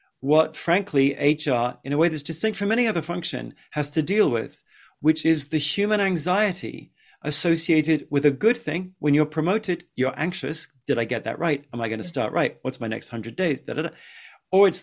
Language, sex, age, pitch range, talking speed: English, male, 40-59, 145-180 Hz, 200 wpm